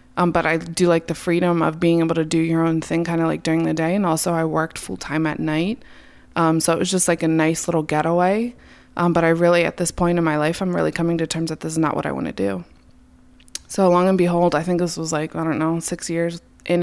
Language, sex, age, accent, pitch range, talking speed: English, female, 20-39, American, 160-175 Hz, 280 wpm